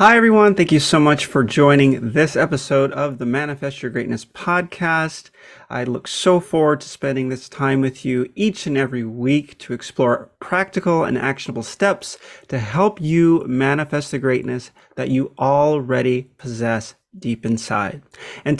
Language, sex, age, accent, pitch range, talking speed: English, male, 30-49, American, 135-190 Hz, 160 wpm